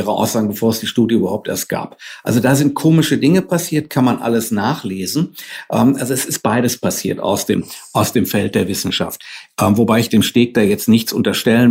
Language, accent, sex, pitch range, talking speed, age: German, German, male, 120-155 Hz, 195 wpm, 60-79